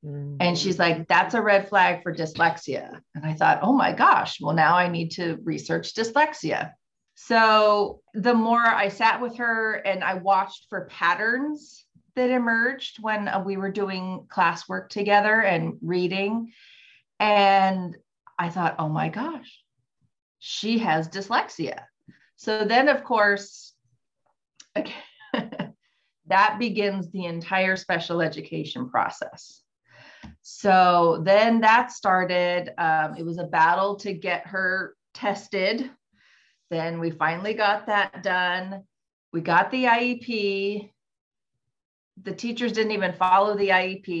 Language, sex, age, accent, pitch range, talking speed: English, female, 30-49, American, 170-215 Hz, 130 wpm